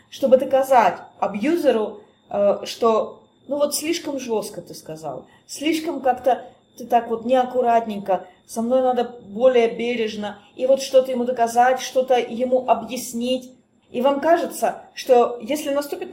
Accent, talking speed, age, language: native, 130 wpm, 30-49, Russian